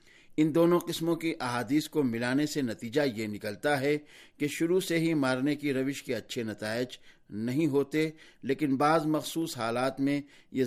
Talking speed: 170 wpm